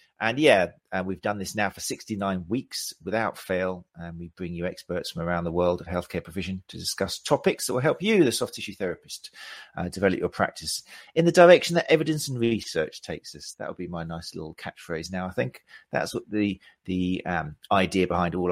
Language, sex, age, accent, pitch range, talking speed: English, male, 40-59, British, 90-125 Hz, 215 wpm